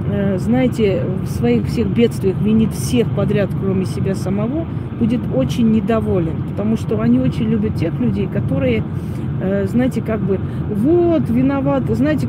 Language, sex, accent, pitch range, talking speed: Russian, female, native, 145-240 Hz, 135 wpm